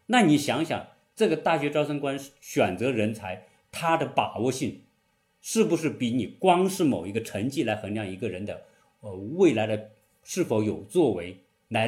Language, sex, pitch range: Chinese, male, 105-150 Hz